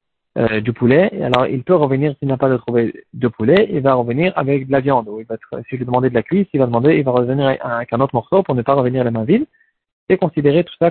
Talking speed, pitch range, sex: 285 wpm, 125-155 Hz, male